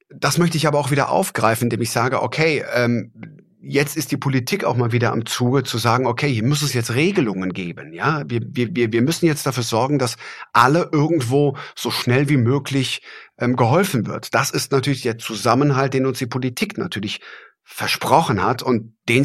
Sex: male